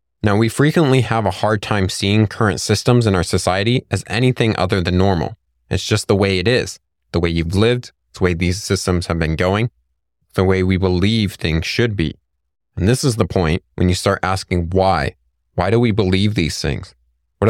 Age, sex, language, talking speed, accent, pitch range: 30-49, male, English, 200 wpm, American, 85-110 Hz